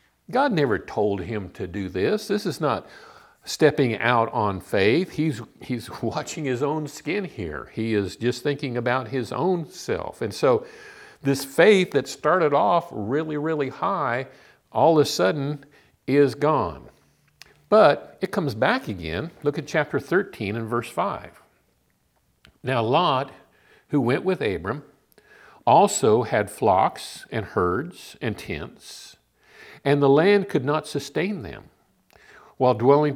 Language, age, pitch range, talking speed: English, 50-69, 110-150 Hz, 145 wpm